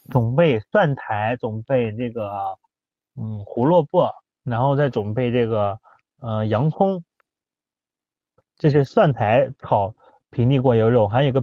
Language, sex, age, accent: Chinese, male, 30-49, native